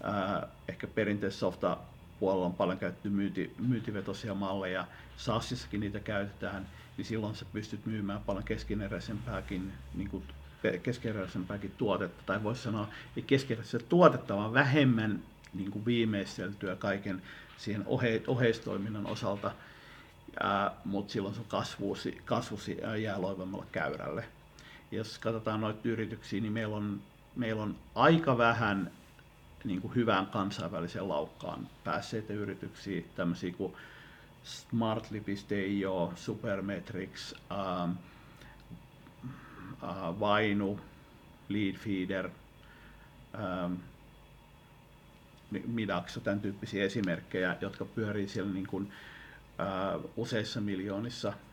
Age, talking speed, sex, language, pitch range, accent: 50-69, 100 wpm, male, Finnish, 95-110 Hz, native